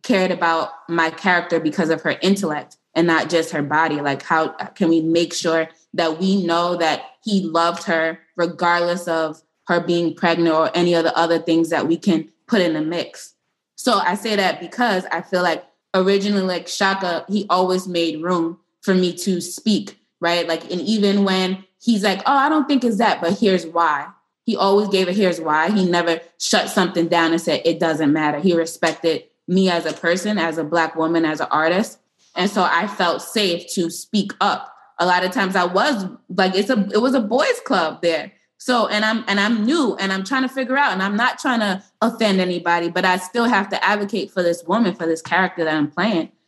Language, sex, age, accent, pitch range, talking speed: English, female, 20-39, American, 165-195 Hz, 215 wpm